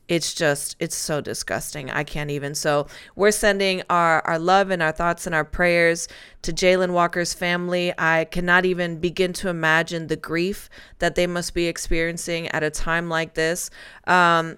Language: English